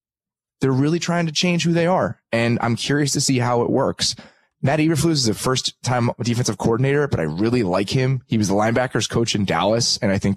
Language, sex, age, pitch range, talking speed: English, male, 20-39, 95-115 Hz, 225 wpm